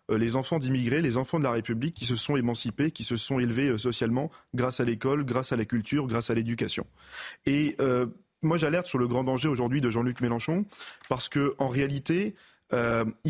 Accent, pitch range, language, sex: French, 125-170 Hz, French, male